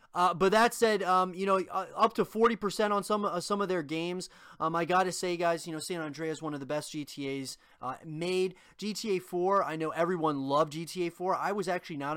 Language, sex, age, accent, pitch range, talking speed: English, male, 30-49, American, 145-190 Hz, 225 wpm